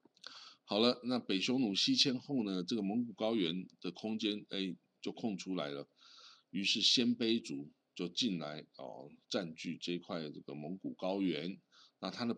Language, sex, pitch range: Chinese, male, 85-110 Hz